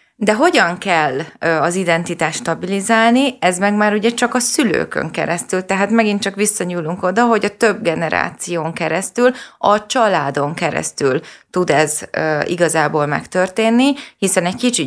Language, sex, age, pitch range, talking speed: Hungarian, female, 20-39, 160-215 Hz, 145 wpm